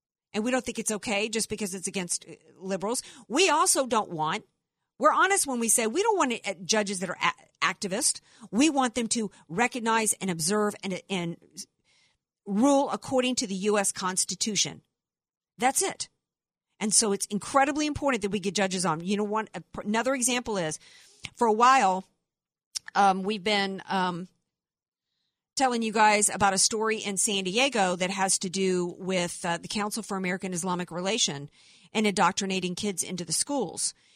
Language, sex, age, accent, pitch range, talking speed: English, female, 50-69, American, 185-225 Hz, 170 wpm